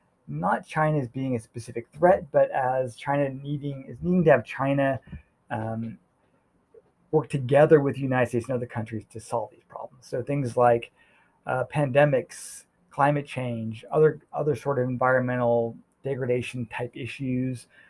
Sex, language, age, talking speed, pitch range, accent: male, English, 20-39, 150 wpm, 120-145 Hz, American